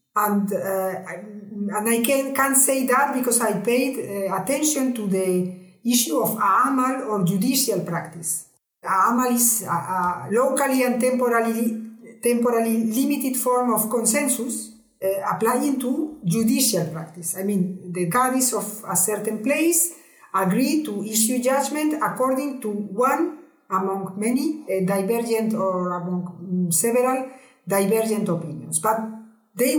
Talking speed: 130 wpm